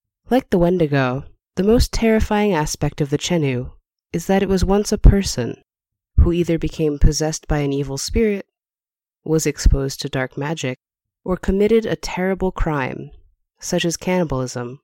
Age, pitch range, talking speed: 20-39, 135-185 Hz, 155 wpm